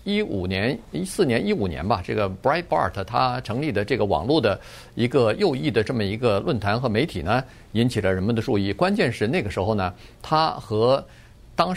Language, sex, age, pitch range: Chinese, male, 50-69, 100-130 Hz